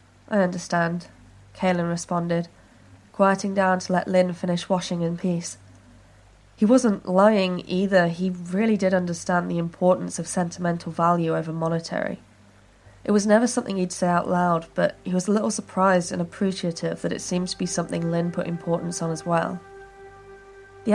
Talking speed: 165 wpm